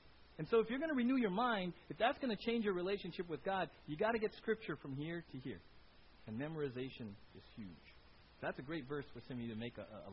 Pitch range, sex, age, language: 115-175 Hz, male, 40-59, English